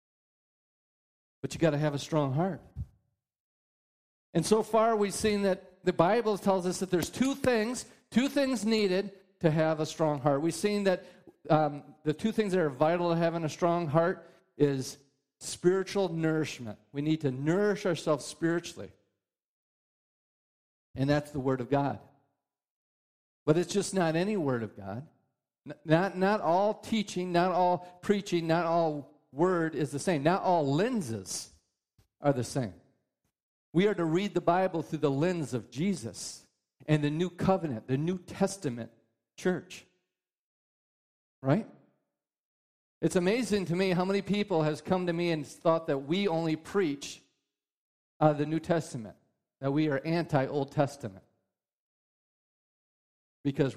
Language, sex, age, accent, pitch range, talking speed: English, male, 50-69, American, 140-185 Hz, 150 wpm